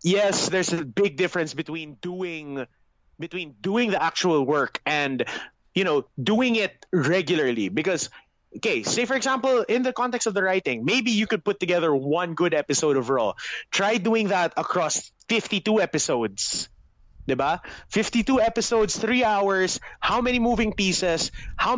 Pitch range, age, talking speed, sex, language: 155-215 Hz, 20-39, 150 wpm, male, English